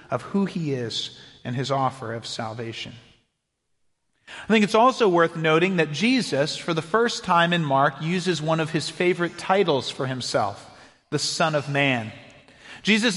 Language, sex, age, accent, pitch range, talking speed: English, male, 40-59, American, 145-195 Hz, 165 wpm